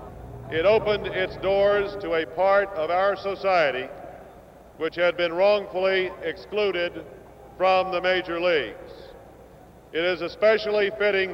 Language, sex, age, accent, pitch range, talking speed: English, male, 50-69, American, 175-195 Hz, 120 wpm